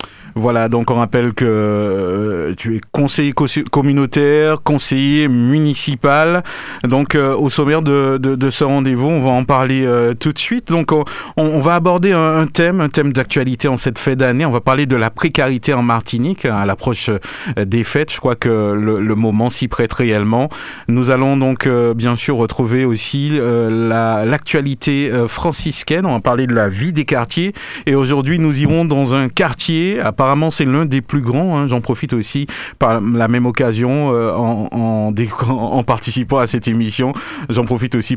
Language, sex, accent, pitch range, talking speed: French, male, French, 120-145 Hz, 190 wpm